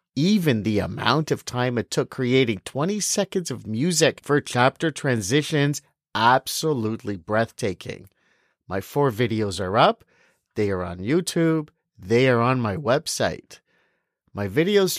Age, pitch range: 50-69, 110-160 Hz